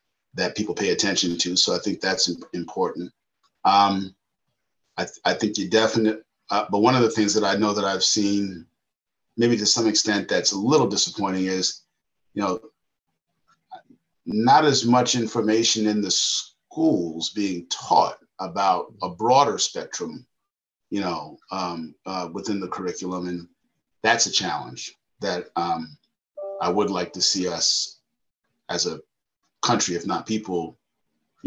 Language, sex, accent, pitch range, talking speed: English, male, American, 95-115 Hz, 145 wpm